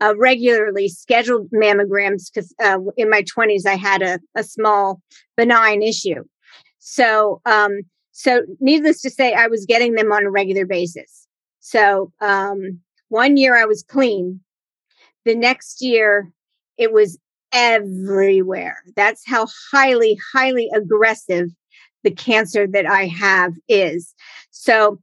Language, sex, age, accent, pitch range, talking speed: English, female, 40-59, American, 195-230 Hz, 130 wpm